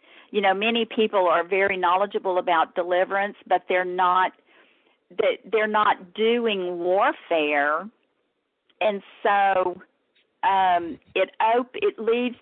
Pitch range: 180-225 Hz